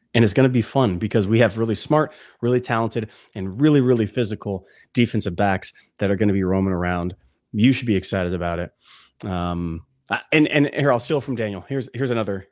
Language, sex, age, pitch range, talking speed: English, male, 30-49, 100-120 Hz, 205 wpm